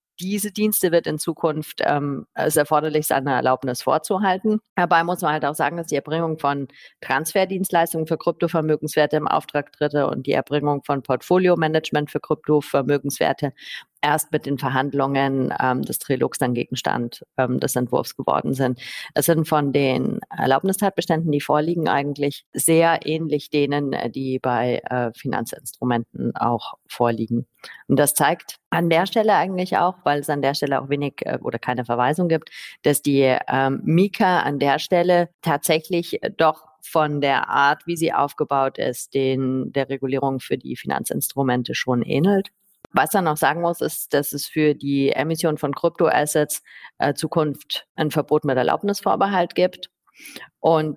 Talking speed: 150 wpm